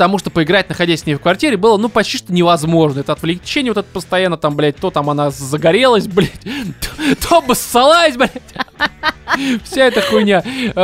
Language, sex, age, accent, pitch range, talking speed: Russian, male, 20-39, native, 155-210 Hz, 175 wpm